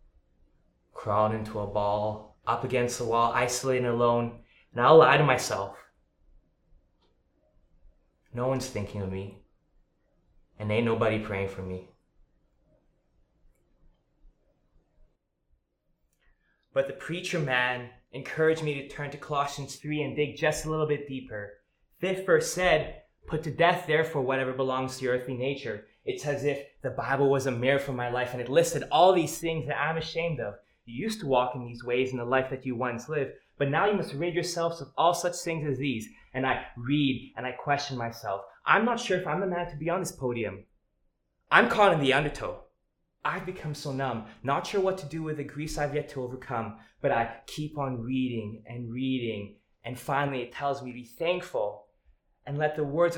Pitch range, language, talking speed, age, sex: 115-155 Hz, English, 185 wpm, 20-39, male